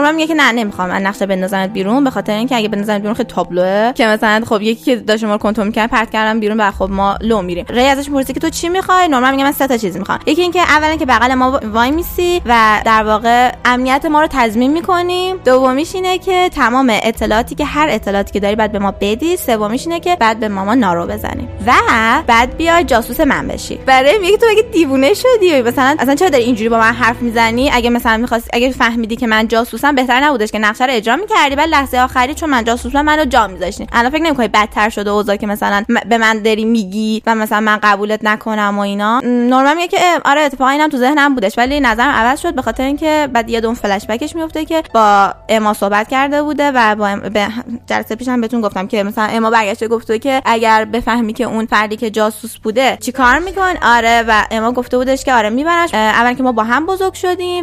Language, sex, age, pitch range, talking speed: Persian, female, 10-29, 215-285 Hz, 220 wpm